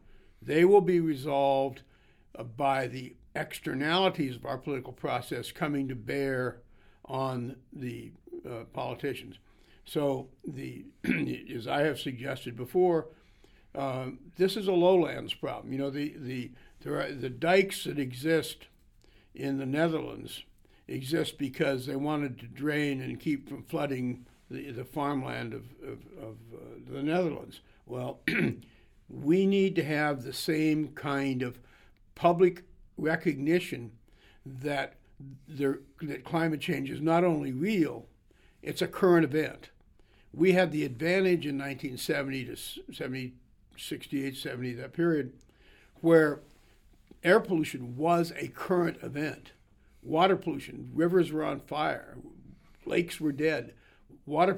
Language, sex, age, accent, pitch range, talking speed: English, male, 60-79, American, 130-165 Hz, 125 wpm